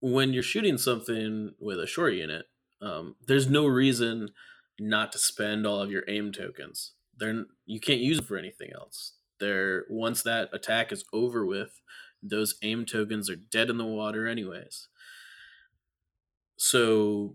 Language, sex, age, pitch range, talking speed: English, male, 20-39, 105-125 Hz, 155 wpm